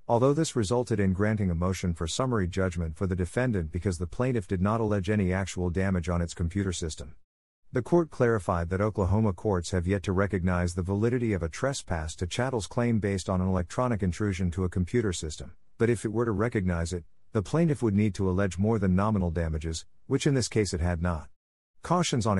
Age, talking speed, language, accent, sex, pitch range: 50-69, 210 wpm, English, American, male, 90-115 Hz